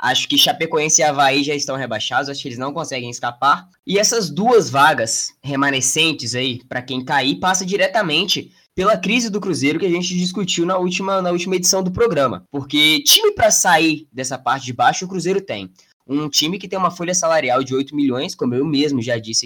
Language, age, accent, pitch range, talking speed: Portuguese, 10-29, Brazilian, 140-185 Hz, 205 wpm